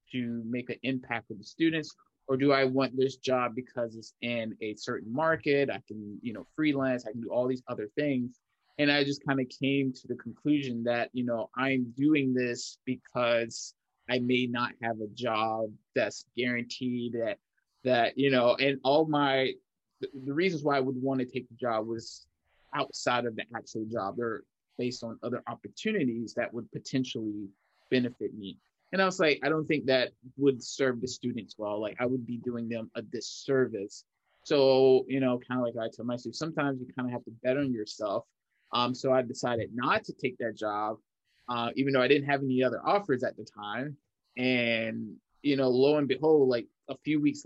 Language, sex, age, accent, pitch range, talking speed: English, male, 20-39, American, 115-135 Hz, 200 wpm